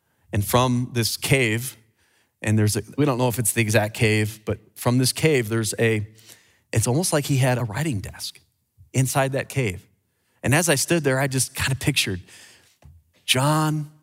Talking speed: 185 wpm